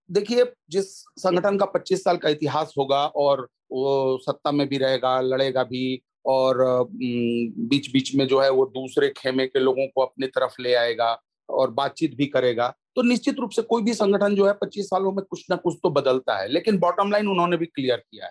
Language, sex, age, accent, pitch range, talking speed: Hindi, male, 40-59, native, 135-195 Hz, 205 wpm